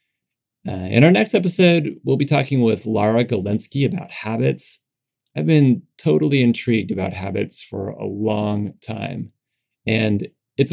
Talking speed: 140 wpm